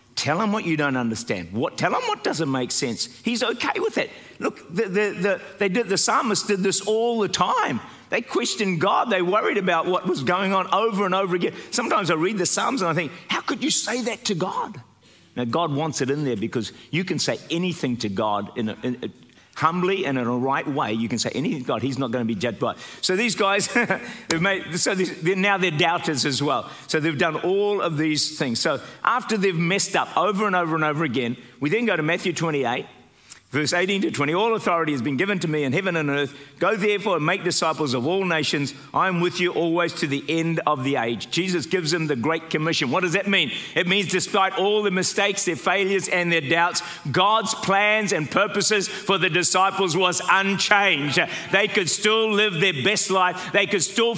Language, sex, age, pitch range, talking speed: English, male, 50-69, 160-205 Hz, 225 wpm